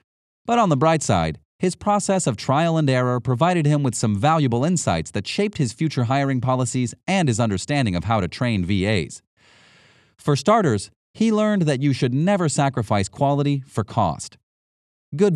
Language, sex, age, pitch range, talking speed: English, male, 30-49, 110-150 Hz, 170 wpm